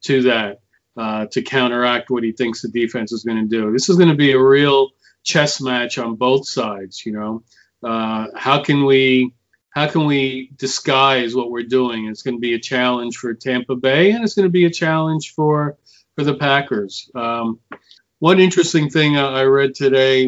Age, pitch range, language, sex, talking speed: 40-59, 120-145 Hz, English, male, 195 wpm